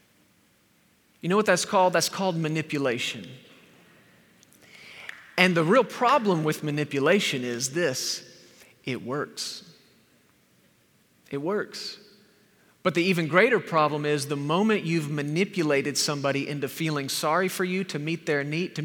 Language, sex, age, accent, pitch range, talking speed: English, male, 40-59, American, 155-215 Hz, 130 wpm